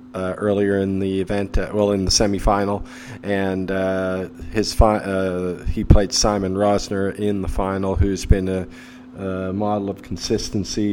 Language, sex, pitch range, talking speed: English, male, 95-105 Hz, 160 wpm